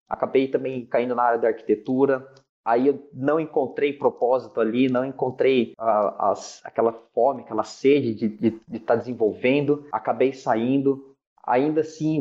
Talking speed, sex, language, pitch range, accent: 150 wpm, male, Portuguese, 130-175 Hz, Brazilian